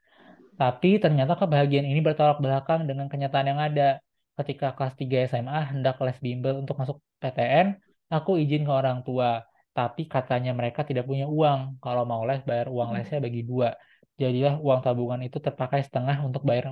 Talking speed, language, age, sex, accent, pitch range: 170 wpm, Indonesian, 20-39, male, native, 125-145 Hz